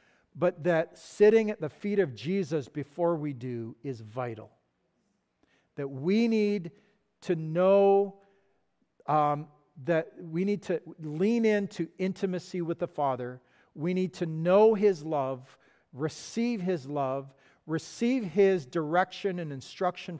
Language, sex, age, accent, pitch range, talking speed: English, male, 50-69, American, 140-185 Hz, 130 wpm